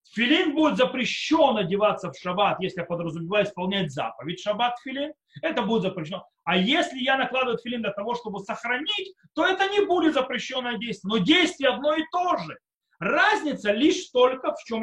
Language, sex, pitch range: Russian, male, 170-260 Hz